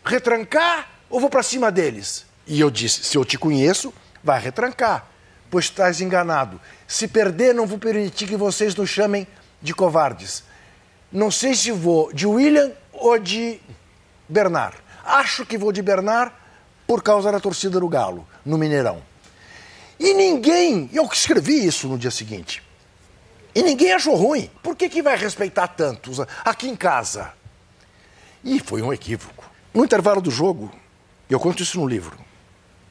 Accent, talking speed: Brazilian, 155 wpm